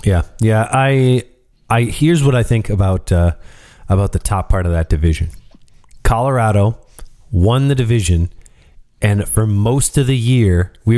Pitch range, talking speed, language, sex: 90-120 Hz, 155 wpm, English, male